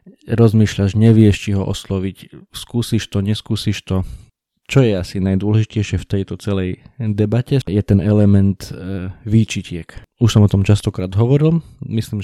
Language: Slovak